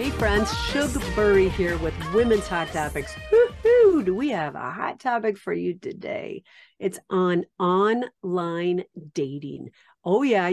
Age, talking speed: 50-69, 135 wpm